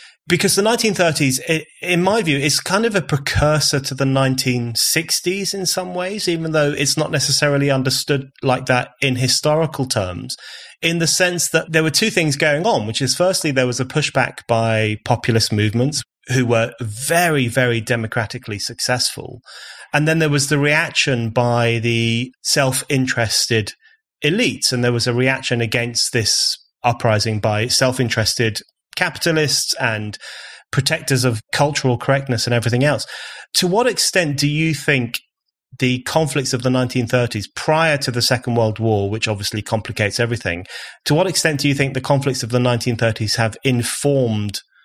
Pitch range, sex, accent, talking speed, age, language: 115-150 Hz, male, British, 155 wpm, 30-49, English